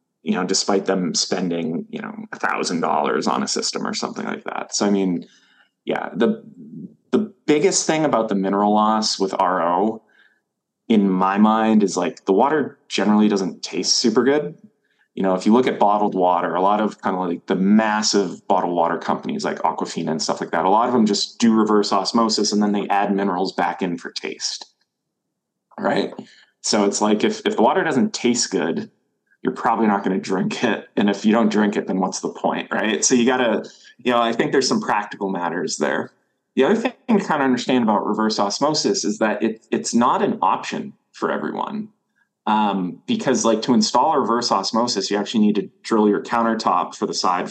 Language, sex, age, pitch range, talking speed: English, male, 20-39, 95-120 Hz, 205 wpm